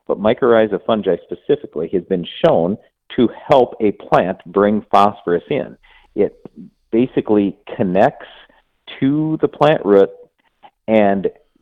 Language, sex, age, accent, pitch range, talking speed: English, male, 50-69, American, 95-120 Hz, 115 wpm